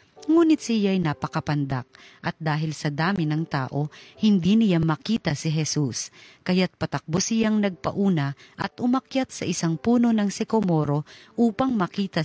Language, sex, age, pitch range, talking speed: Filipino, female, 40-59, 150-200 Hz, 130 wpm